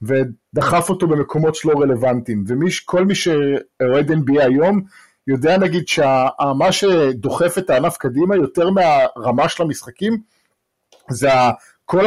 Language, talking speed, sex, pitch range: English, 110 wpm, male, 140-175 Hz